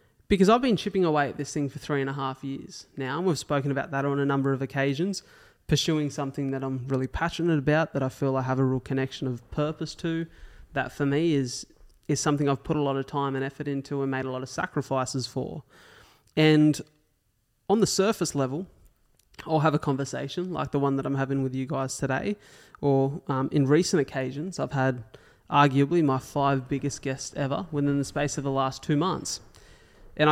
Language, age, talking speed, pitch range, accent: English, 20-39, 210 wpm, 135-150 Hz, Australian